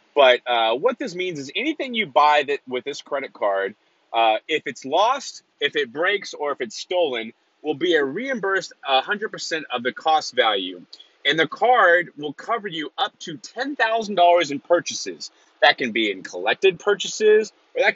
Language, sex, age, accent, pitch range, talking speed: English, male, 30-49, American, 125-200 Hz, 175 wpm